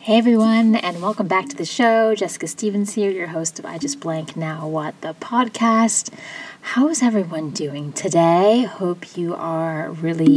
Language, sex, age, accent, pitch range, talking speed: English, female, 20-39, American, 155-195 Hz, 175 wpm